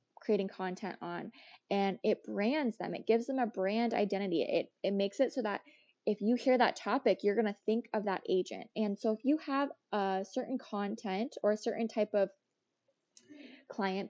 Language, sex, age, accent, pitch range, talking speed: English, female, 20-39, American, 195-240 Hz, 190 wpm